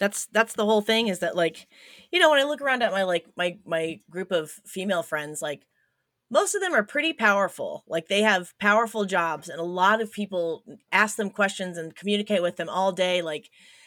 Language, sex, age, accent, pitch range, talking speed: English, female, 30-49, American, 165-210 Hz, 215 wpm